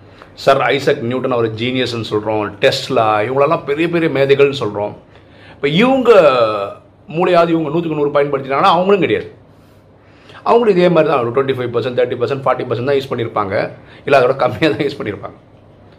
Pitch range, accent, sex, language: 105-155 Hz, native, male, Tamil